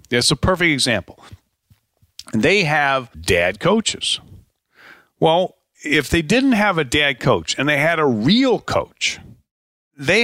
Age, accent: 50-69, American